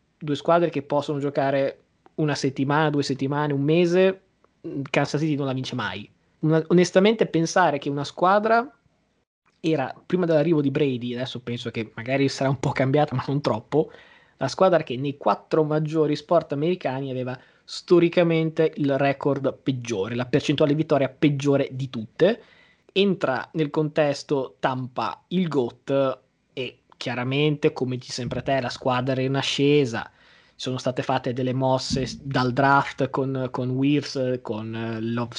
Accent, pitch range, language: native, 130-150 Hz, Italian